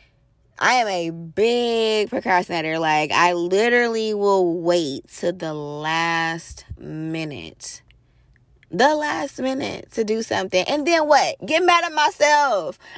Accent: American